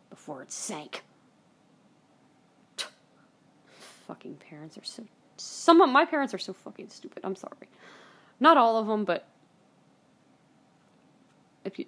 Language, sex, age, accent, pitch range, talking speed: English, female, 20-39, American, 175-245 Hz, 125 wpm